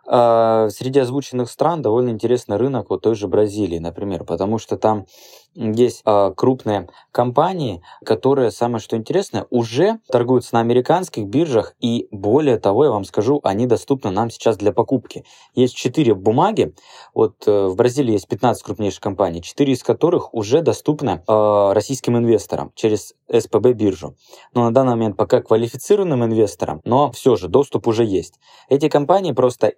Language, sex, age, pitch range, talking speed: Russian, male, 20-39, 100-125 Hz, 155 wpm